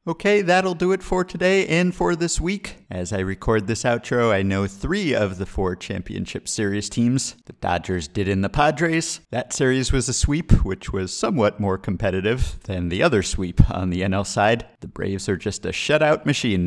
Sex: male